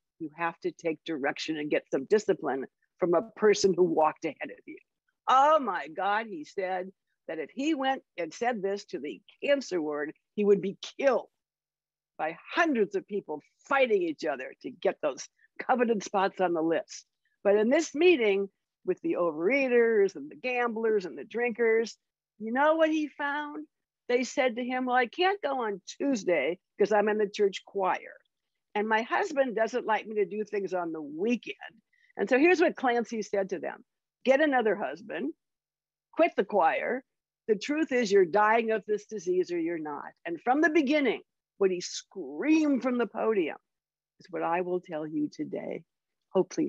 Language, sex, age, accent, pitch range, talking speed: English, female, 60-79, American, 185-275 Hz, 180 wpm